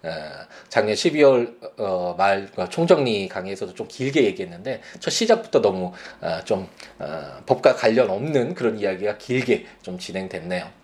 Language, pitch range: Korean, 95-145 Hz